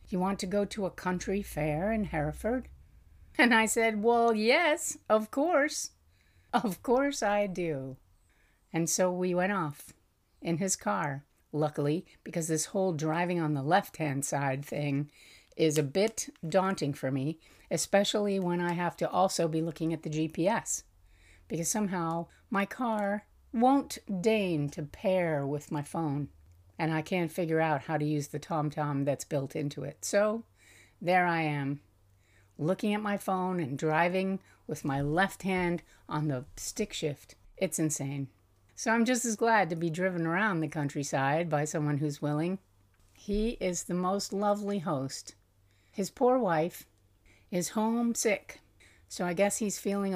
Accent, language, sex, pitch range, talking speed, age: American, English, female, 145-195 Hz, 160 wpm, 50-69